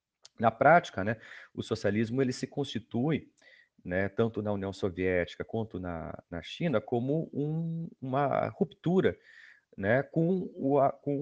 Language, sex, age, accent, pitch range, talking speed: Portuguese, male, 40-59, Brazilian, 100-135 Hz, 135 wpm